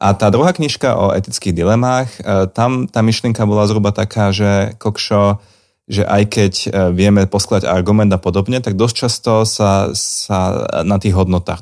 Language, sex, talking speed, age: Slovak, male, 160 wpm, 30-49